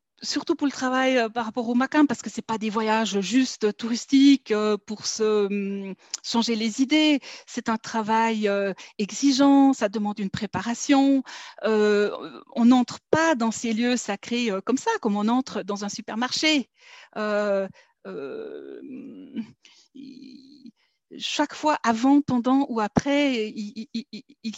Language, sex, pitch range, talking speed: French, female, 215-275 Hz, 125 wpm